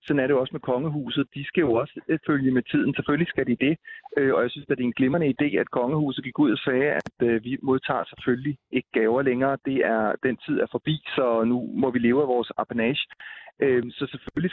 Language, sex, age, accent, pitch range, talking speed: Danish, male, 30-49, native, 120-140 Hz, 230 wpm